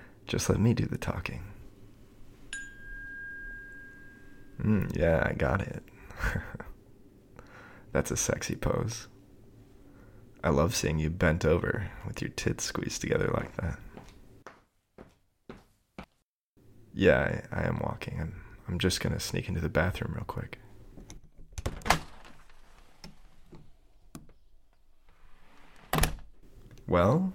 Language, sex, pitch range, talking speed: English, male, 95-120 Hz, 95 wpm